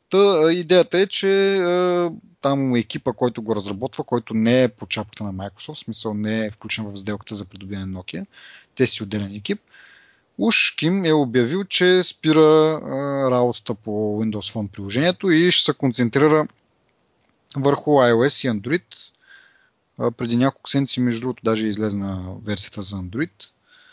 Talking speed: 160 wpm